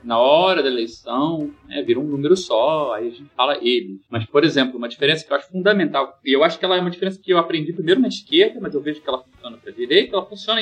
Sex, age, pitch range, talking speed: male, 30-49, 130-195 Hz, 265 wpm